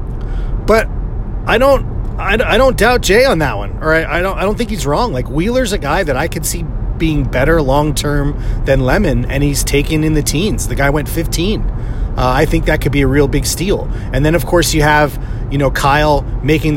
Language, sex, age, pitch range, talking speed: English, male, 30-49, 115-155 Hz, 230 wpm